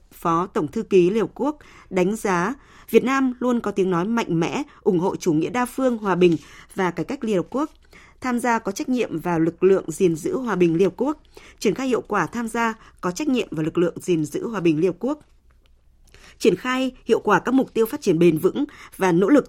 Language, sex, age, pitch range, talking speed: Vietnamese, female, 20-39, 175-235 Hz, 230 wpm